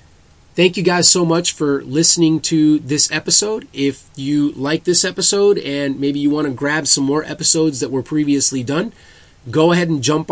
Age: 30-49